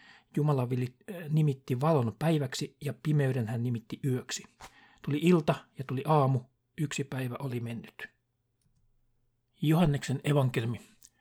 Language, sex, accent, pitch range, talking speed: Finnish, male, native, 120-150 Hz, 105 wpm